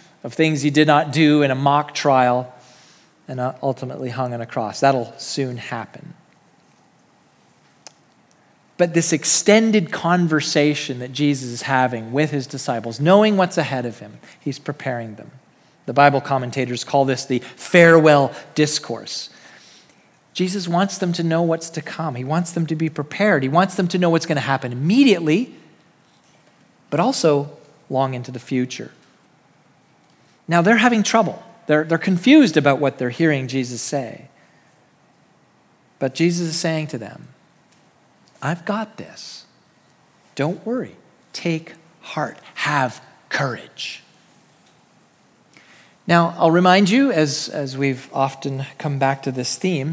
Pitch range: 135-170 Hz